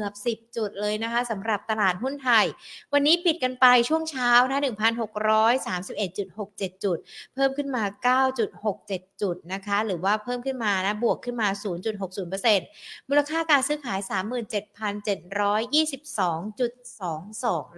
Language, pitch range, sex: Thai, 195-250 Hz, female